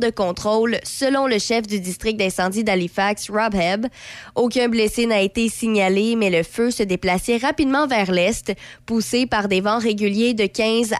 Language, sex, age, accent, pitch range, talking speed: French, female, 20-39, Canadian, 195-235 Hz, 170 wpm